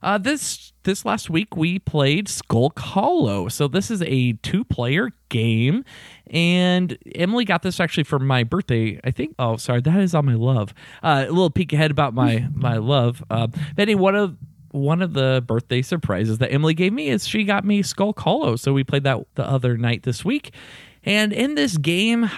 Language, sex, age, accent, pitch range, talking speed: English, male, 20-39, American, 120-170 Hz, 200 wpm